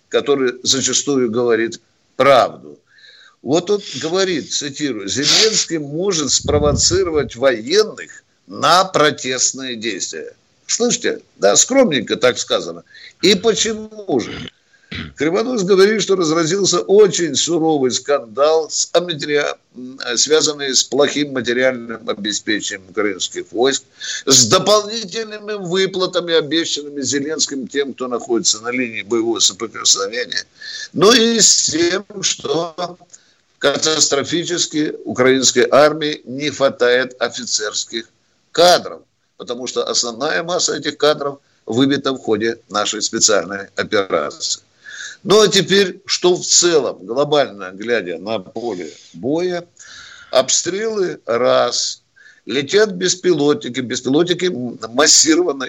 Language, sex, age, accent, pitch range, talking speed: Russian, male, 50-69, native, 130-200 Hz, 95 wpm